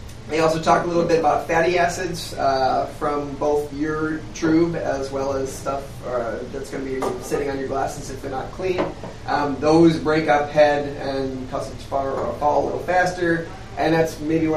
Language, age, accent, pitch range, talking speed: English, 20-39, American, 135-160 Hz, 195 wpm